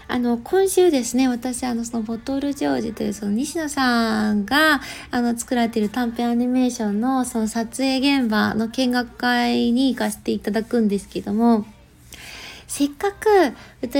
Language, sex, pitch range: Japanese, female, 220-290 Hz